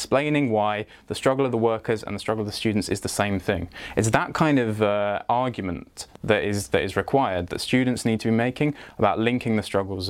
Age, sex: 20-39, male